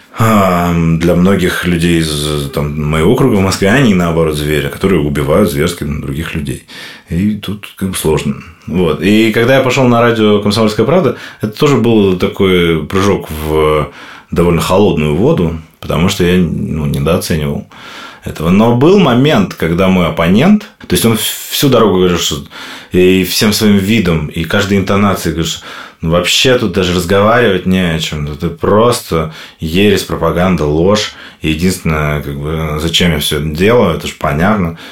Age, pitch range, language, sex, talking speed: 20-39, 75-95 Hz, Russian, male, 155 wpm